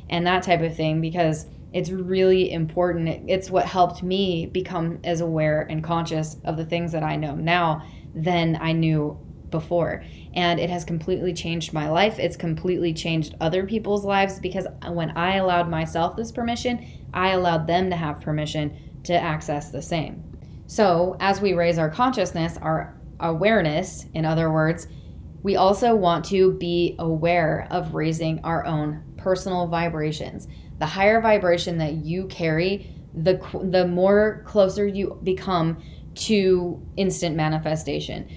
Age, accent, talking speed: 10-29, American, 150 wpm